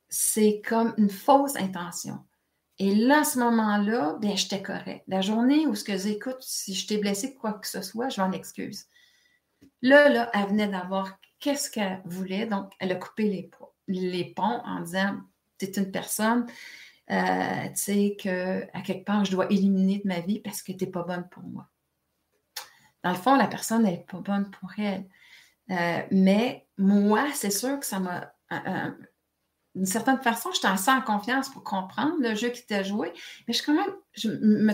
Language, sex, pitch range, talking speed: French, female, 195-265 Hz, 190 wpm